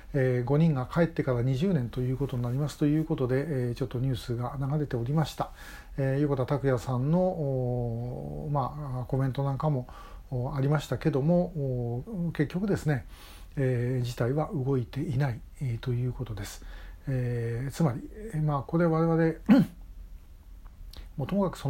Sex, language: male, Japanese